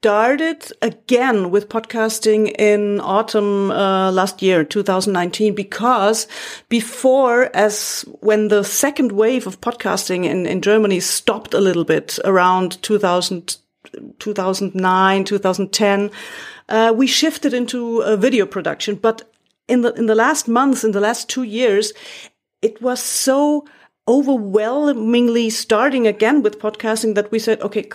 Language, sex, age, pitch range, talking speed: English, female, 40-59, 205-240 Hz, 130 wpm